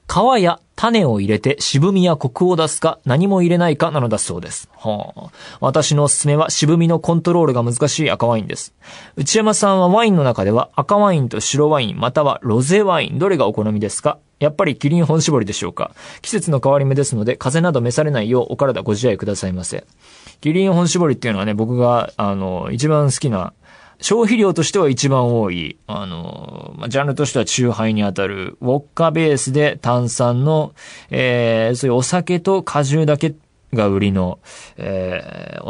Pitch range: 110-160 Hz